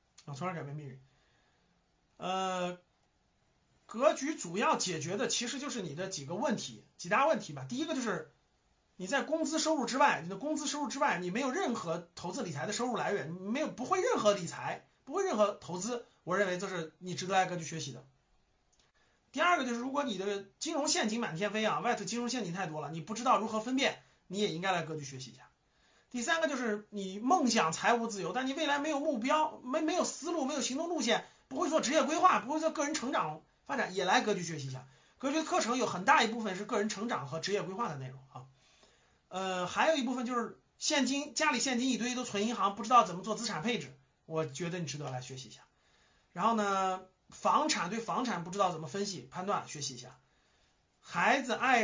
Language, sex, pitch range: Chinese, male, 180-270 Hz